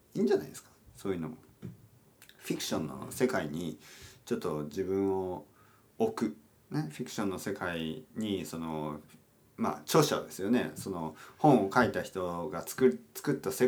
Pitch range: 80-135 Hz